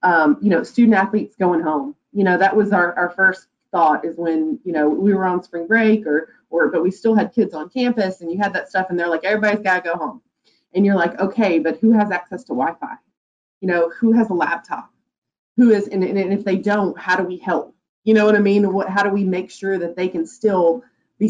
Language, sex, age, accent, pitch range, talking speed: English, female, 30-49, American, 165-200 Hz, 250 wpm